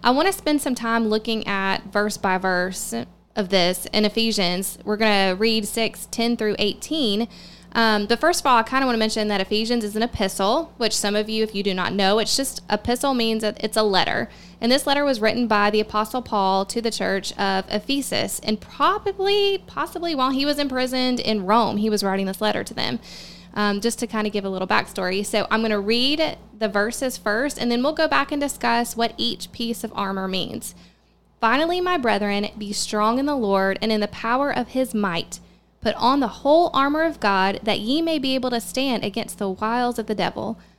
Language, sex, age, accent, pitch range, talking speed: English, female, 20-39, American, 205-255 Hz, 220 wpm